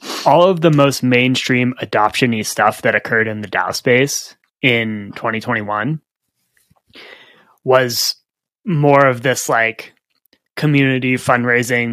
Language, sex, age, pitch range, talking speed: English, male, 20-39, 115-150 Hz, 110 wpm